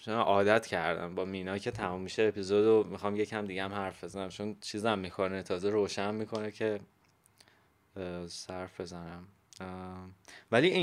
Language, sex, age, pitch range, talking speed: Persian, male, 20-39, 95-120 Hz, 150 wpm